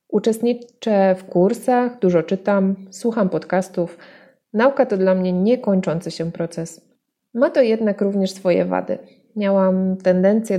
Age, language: 20-39, Polish